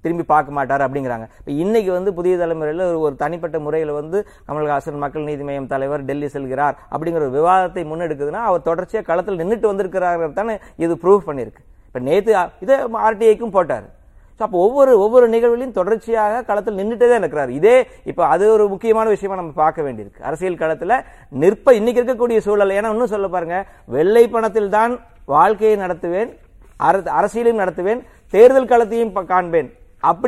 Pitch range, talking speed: 170-220 Hz, 150 wpm